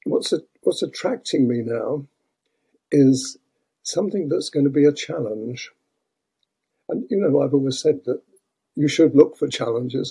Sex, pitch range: male, 130-160 Hz